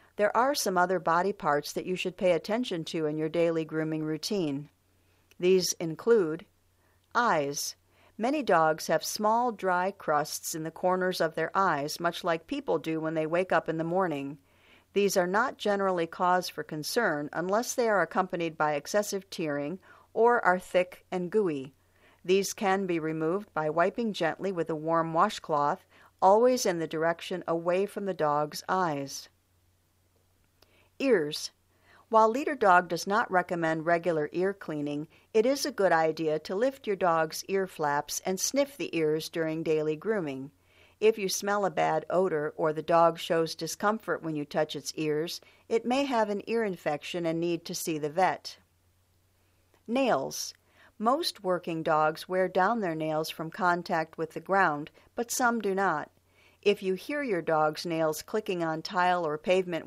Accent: American